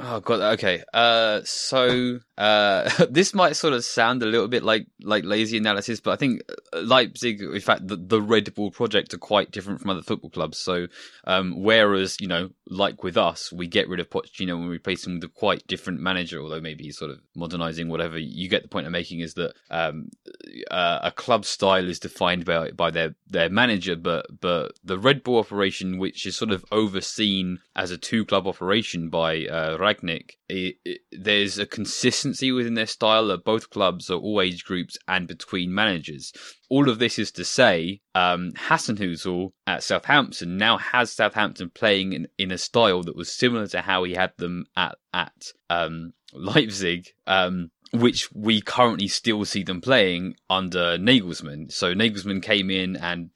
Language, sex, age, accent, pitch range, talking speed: English, male, 20-39, British, 85-110 Hz, 185 wpm